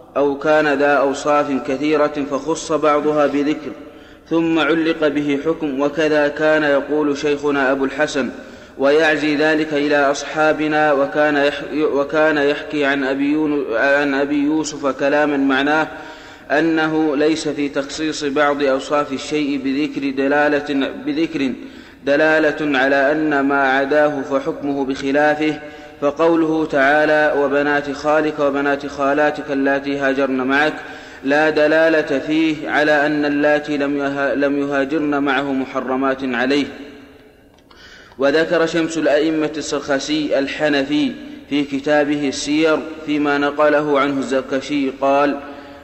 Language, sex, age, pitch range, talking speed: Arabic, male, 30-49, 140-155 Hz, 105 wpm